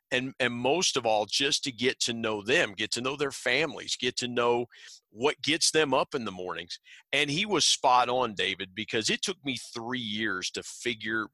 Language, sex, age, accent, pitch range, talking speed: English, male, 40-59, American, 110-145 Hz, 210 wpm